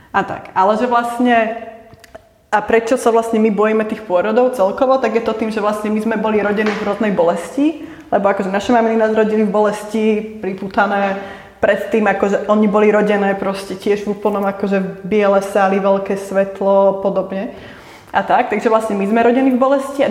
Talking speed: 190 wpm